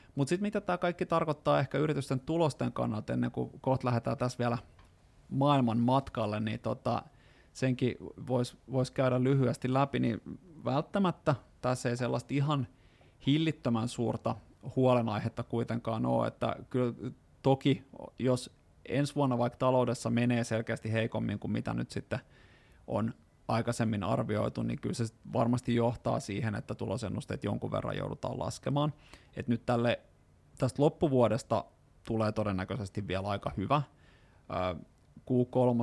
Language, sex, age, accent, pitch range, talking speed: Finnish, male, 20-39, native, 110-130 Hz, 130 wpm